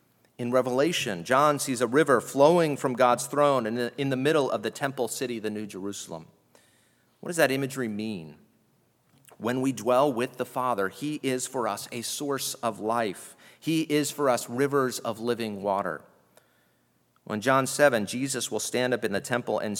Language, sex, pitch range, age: English, male, 115-145 Hz, 40-59